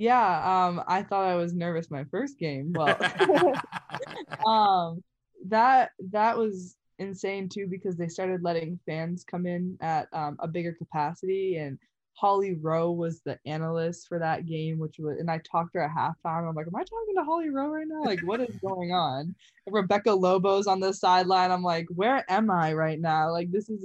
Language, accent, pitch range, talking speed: English, American, 155-185 Hz, 195 wpm